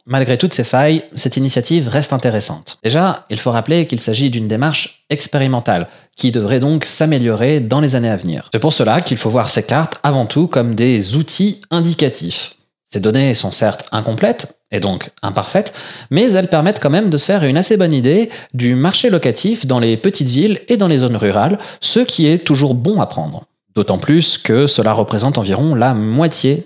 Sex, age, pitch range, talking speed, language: male, 30-49, 120-160 Hz, 195 wpm, French